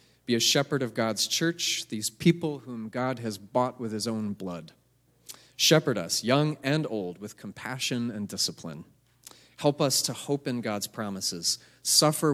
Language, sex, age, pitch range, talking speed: English, male, 30-49, 110-135 Hz, 160 wpm